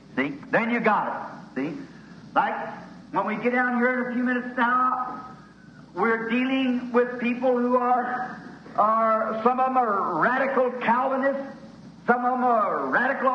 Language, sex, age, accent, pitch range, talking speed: English, male, 60-79, American, 210-265 Hz, 155 wpm